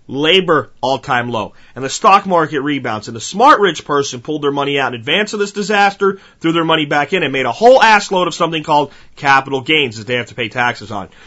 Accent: American